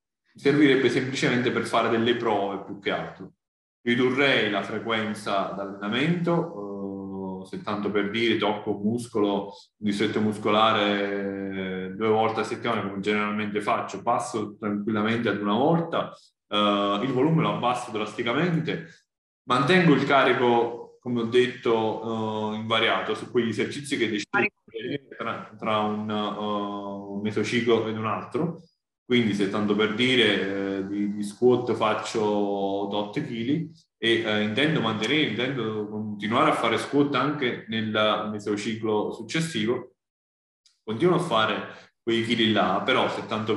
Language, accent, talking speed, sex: Italian, native, 125 wpm, male